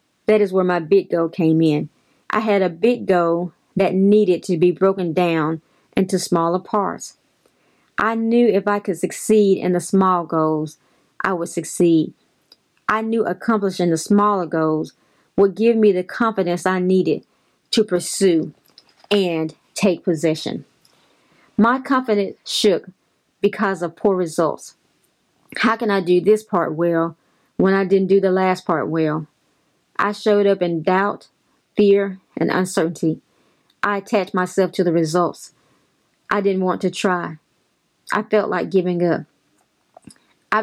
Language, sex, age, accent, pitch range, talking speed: English, female, 40-59, American, 175-210 Hz, 150 wpm